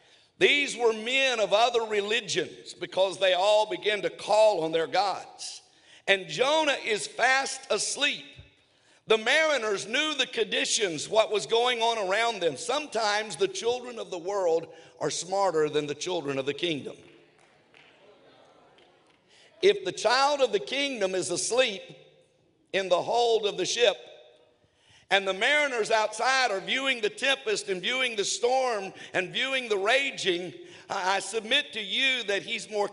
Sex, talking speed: male, 150 wpm